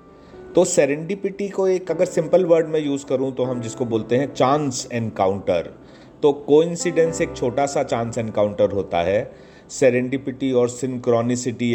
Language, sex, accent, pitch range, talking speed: English, male, Indian, 105-135 Hz, 150 wpm